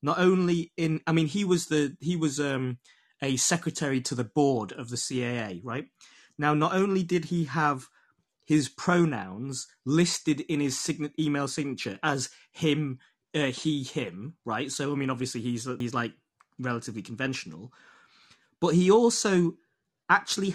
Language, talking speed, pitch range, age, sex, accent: English, 155 wpm, 135-175 Hz, 30-49, male, British